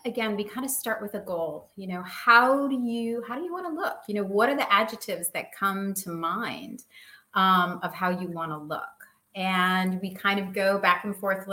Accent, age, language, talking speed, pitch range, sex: American, 30-49, English, 230 wpm, 175-225 Hz, female